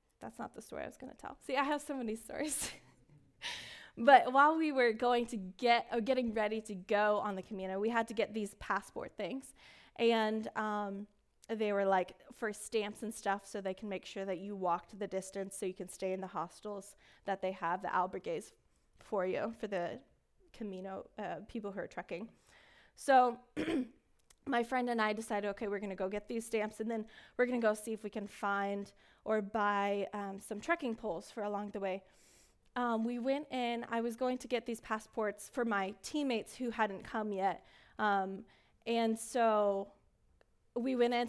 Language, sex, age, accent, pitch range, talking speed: English, female, 10-29, American, 205-245 Hz, 200 wpm